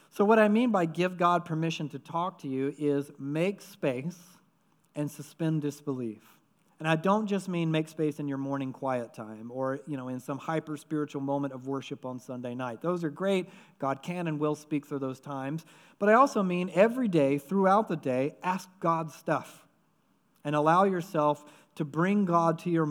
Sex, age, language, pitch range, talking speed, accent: male, 40-59, English, 145-185 Hz, 190 wpm, American